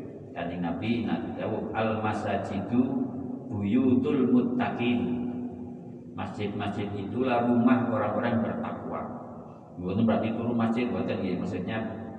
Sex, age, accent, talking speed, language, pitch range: male, 50-69, native, 115 wpm, Indonesian, 105-125 Hz